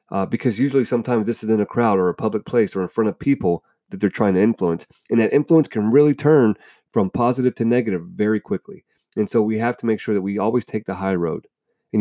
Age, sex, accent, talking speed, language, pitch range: 40-59, male, American, 250 wpm, English, 110-145 Hz